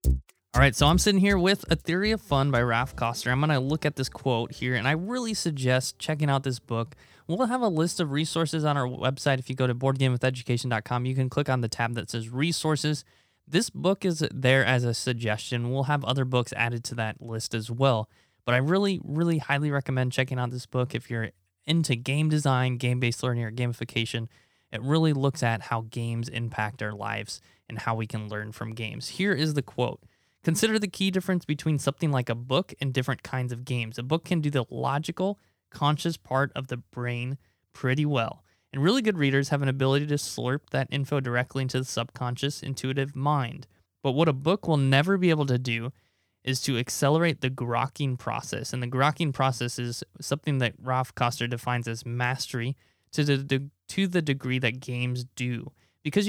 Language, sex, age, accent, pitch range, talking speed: English, male, 20-39, American, 120-150 Hz, 200 wpm